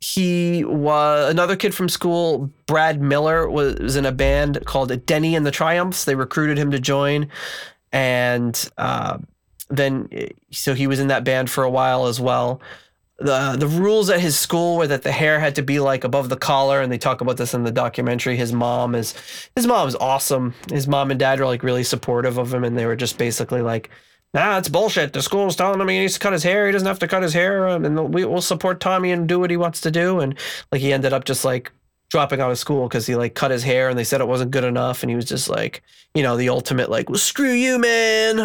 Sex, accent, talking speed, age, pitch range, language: male, American, 240 wpm, 20-39, 130-170 Hz, English